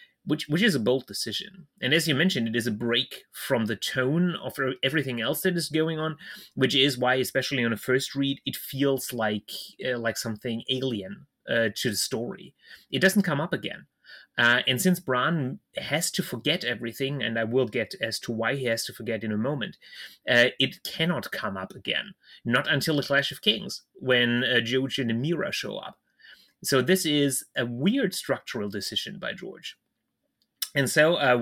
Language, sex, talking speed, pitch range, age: English, male, 195 wpm, 120-155 Hz, 30-49